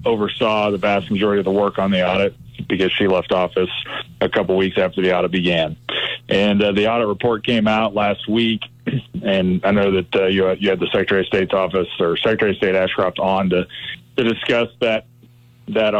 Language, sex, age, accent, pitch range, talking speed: English, male, 30-49, American, 100-115 Hz, 200 wpm